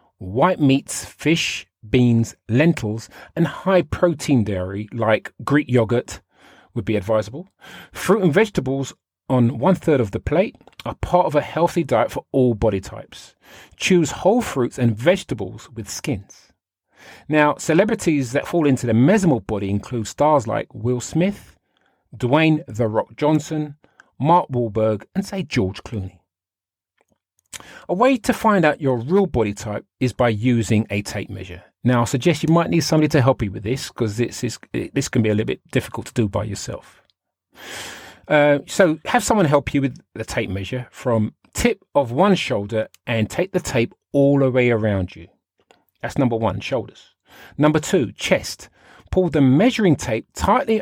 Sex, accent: male, British